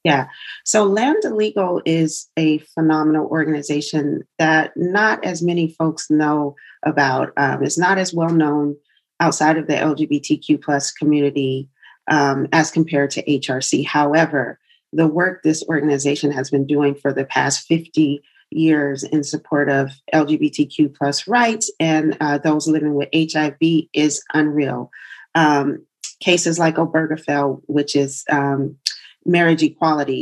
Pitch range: 145-165 Hz